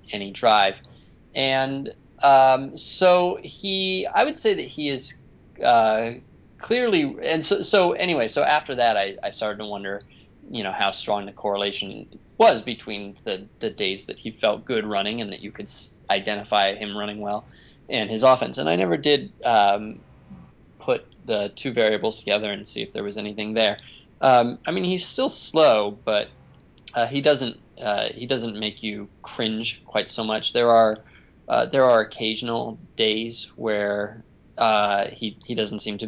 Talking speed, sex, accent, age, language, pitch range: 175 wpm, male, American, 20-39, English, 105-145 Hz